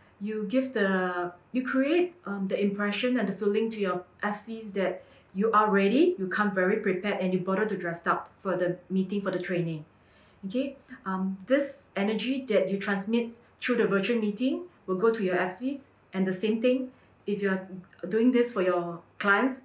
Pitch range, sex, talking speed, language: 190-250 Hz, female, 185 wpm, English